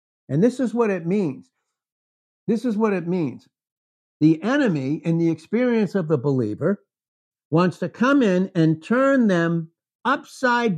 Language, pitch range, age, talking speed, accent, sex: English, 135-200 Hz, 60-79, 150 wpm, American, male